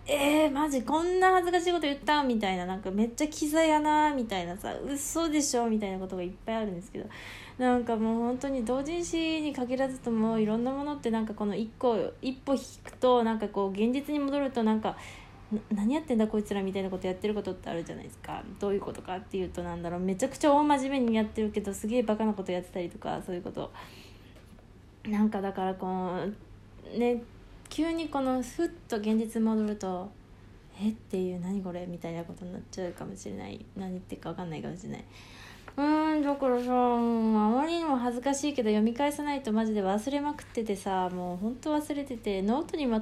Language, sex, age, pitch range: Japanese, female, 20-39, 185-260 Hz